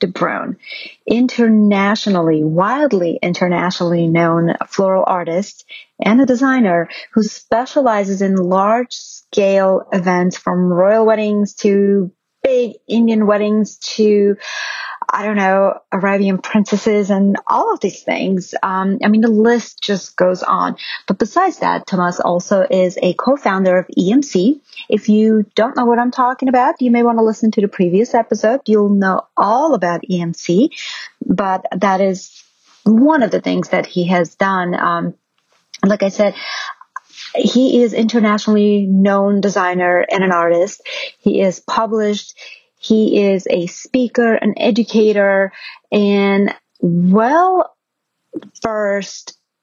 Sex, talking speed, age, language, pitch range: female, 135 wpm, 30-49, English, 185-225 Hz